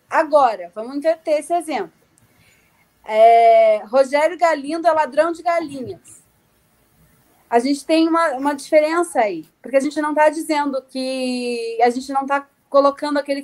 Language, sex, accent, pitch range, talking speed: Portuguese, female, Brazilian, 255-290 Hz, 140 wpm